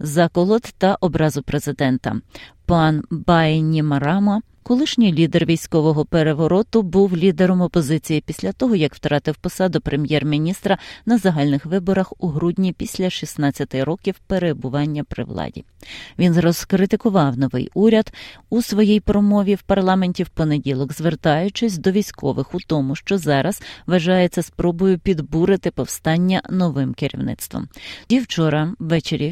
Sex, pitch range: female, 150-190 Hz